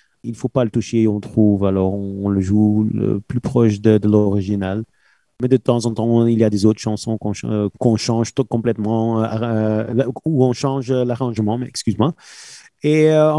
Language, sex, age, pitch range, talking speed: French, male, 30-49, 105-130 Hz, 195 wpm